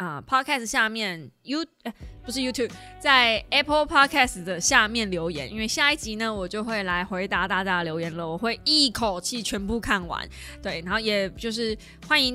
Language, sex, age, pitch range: Chinese, female, 20-39, 205-295 Hz